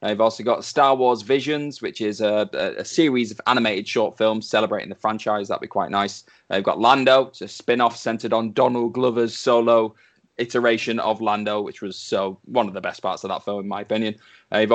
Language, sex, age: English, male, 20-39